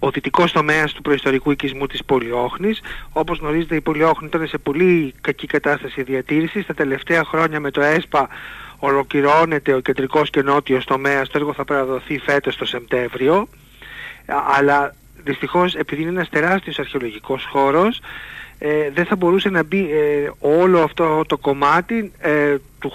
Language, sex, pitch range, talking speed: Greek, male, 140-165 Hz, 145 wpm